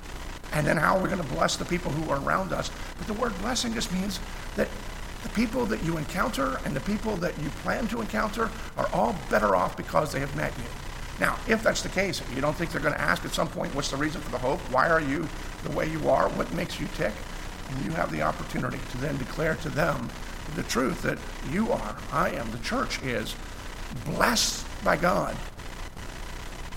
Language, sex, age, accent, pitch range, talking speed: English, male, 50-69, American, 125-180 Hz, 220 wpm